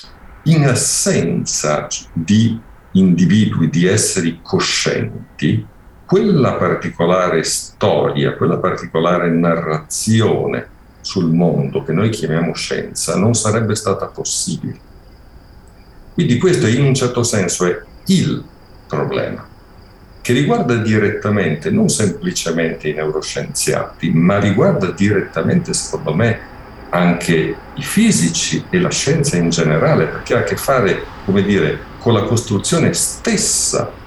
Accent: native